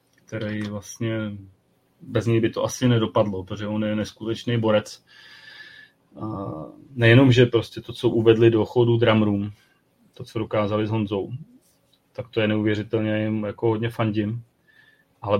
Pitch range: 105-120 Hz